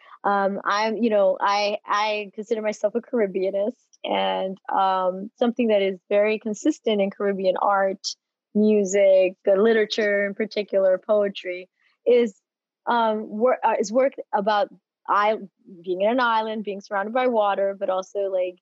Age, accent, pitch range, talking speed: 30-49, American, 185-215 Hz, 140 wpm